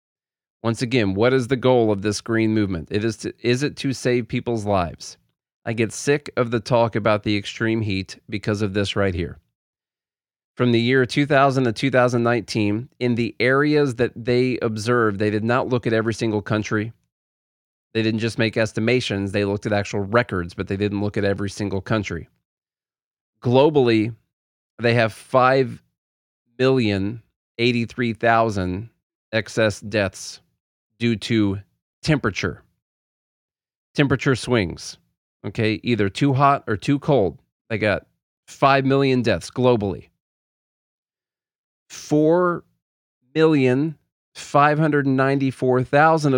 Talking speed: 125 wpm